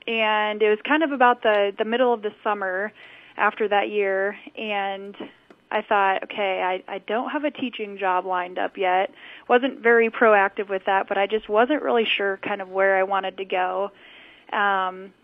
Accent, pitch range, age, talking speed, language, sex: American, 195-230 Hz, 20-39, 190 wpm, English, female